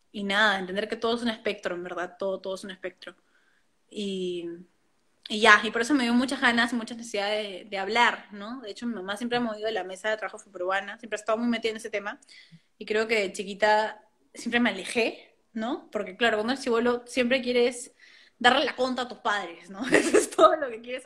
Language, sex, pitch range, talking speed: Spanish, female, 210-245 Hz, 240 wpm